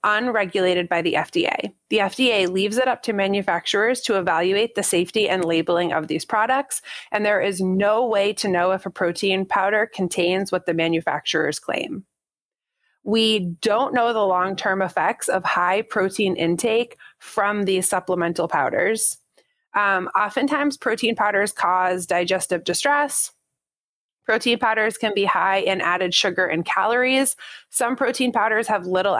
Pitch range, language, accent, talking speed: 185-225 Hz, English, American, 150 wpm